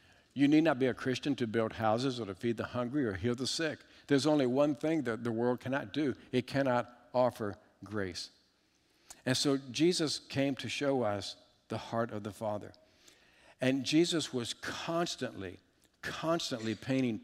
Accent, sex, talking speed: American, male, 170 wpm